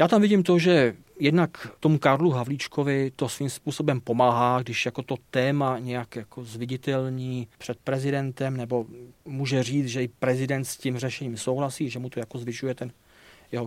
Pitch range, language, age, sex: 125-150 Hz, Czech, 40-59, male